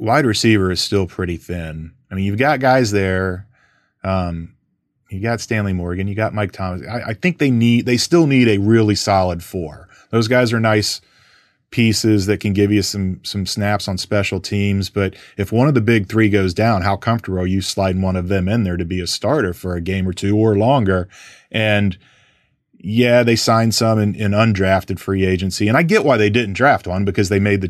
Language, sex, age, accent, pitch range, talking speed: English, male, 30-49, American, 90-110 Hz, 215 wpm